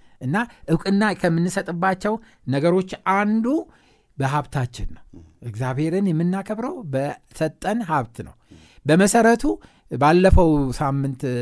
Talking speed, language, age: 80 wpm, Amharic, 60-79